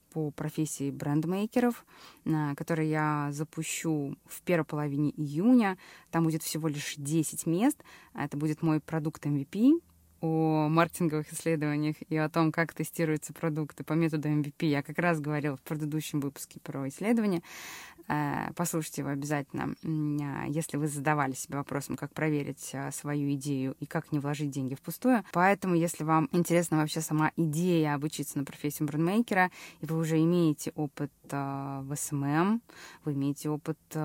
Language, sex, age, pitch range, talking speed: Russian, female, 20-39, 145-170 Hz, 145 wpm